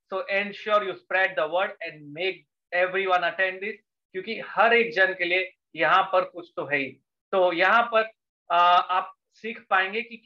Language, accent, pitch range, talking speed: English, Indian, 175-210 Hz, 105 wpm